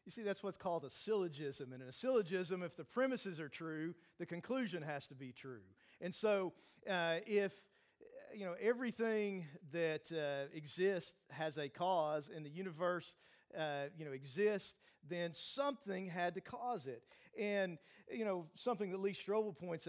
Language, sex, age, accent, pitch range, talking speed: English, male, 50-69, American, 165-225 Hz, 170 wpm